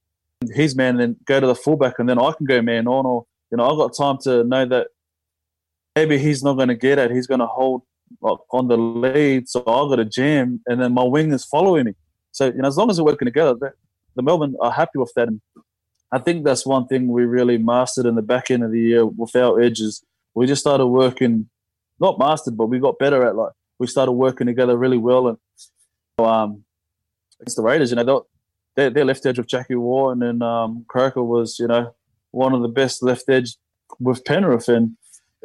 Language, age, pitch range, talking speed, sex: English, 20-39, 115-130 Hz, 225 wpm, male